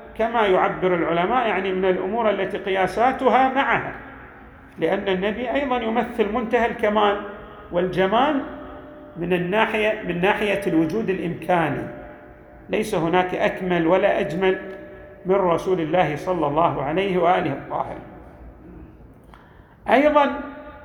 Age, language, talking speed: 50-69, Arabic, 105 wpm